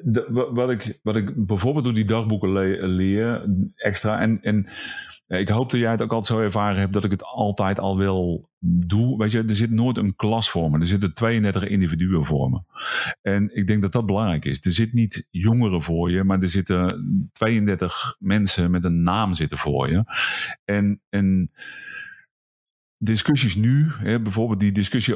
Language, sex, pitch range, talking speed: Dutch, male, 95-115 Hz, 180 wpm